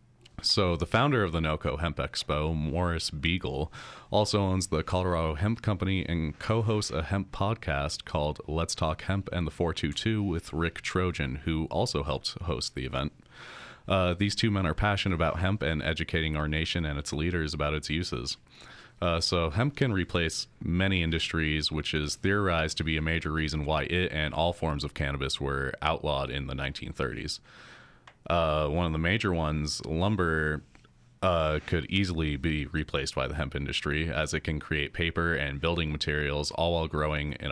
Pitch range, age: 75-90 Hz, 30-49